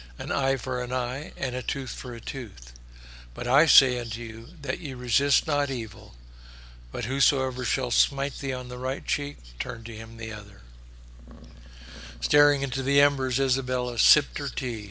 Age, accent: 60-79, American